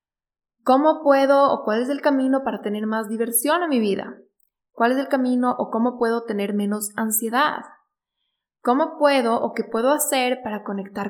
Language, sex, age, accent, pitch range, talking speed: Spanish, female, 10-29, Mexican, 205-265 Hz, 175 wpm